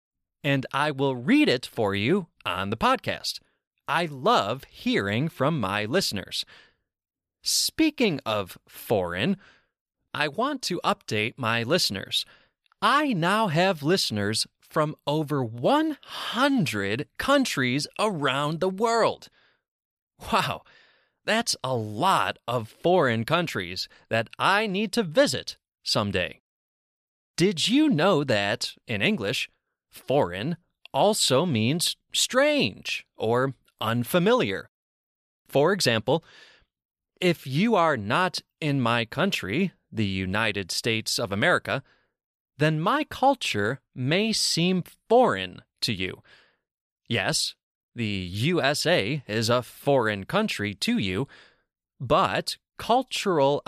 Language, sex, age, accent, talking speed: English, male, 30-49, American, 105 wpm